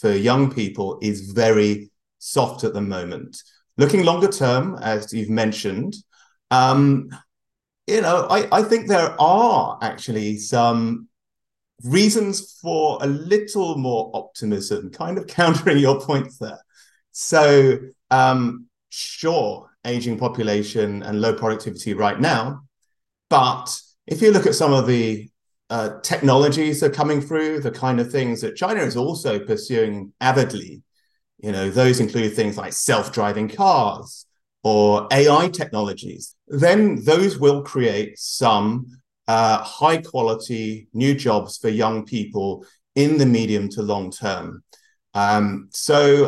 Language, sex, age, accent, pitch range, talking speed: English, male, 30-49, British, 110-150 Hz, 130 wpm